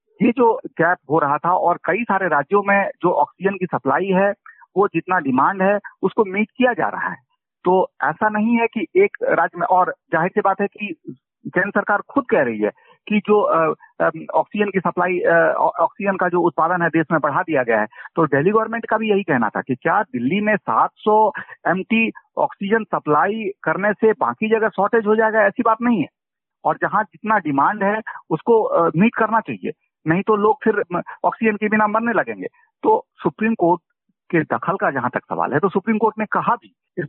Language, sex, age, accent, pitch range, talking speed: Hindi, male, 50-69, native, 170-225 Hz, 200 wpm